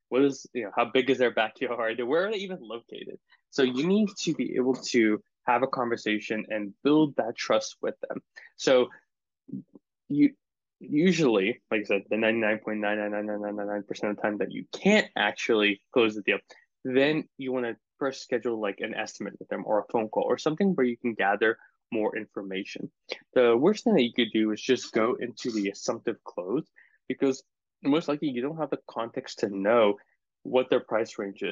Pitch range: 105-135 Hz